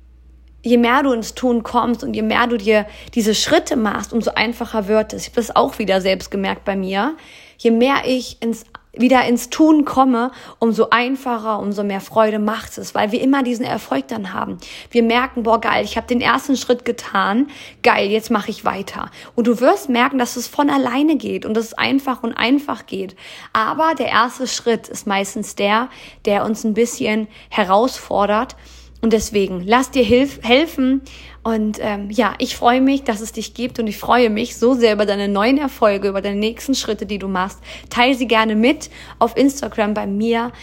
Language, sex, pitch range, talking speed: German, female, 215-245 Hz, 195 wpm